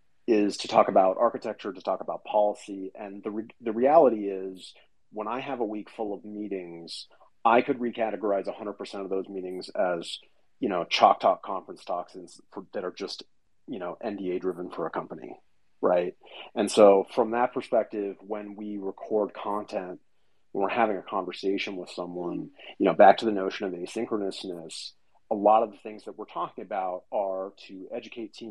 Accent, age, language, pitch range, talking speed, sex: American, 30-49, English, 95-105 Hz, 185 wpm, male